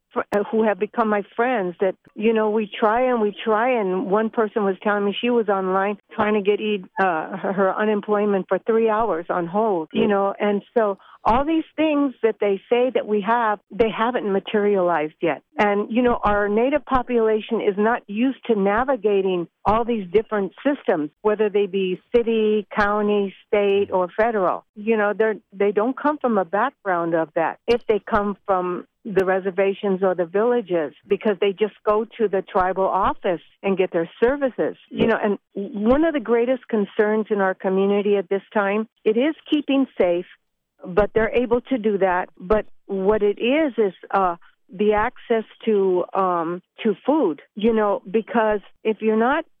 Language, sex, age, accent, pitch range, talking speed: English, female, 60-79, American, 195-230 Hz, 175 wpm